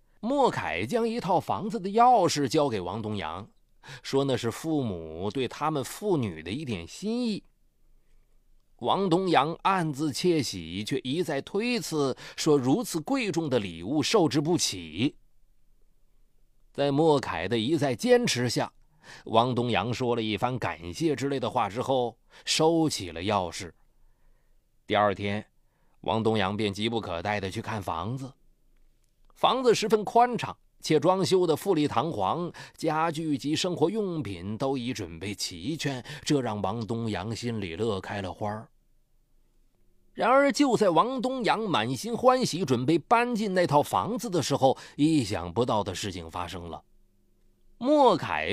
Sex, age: male, 30-49